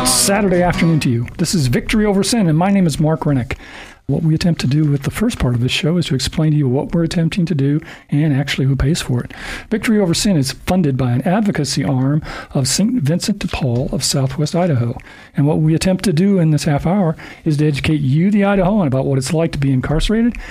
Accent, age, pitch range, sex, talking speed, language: American, 50-69, 135-170 Hz, male, 245 wpm, English